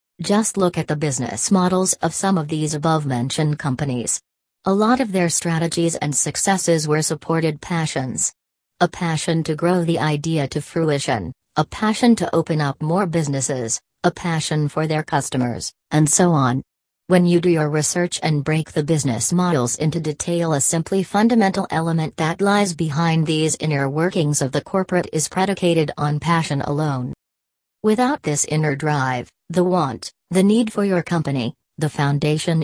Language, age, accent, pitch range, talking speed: English, 40-59, American, 150-180 Hz, 165 wpm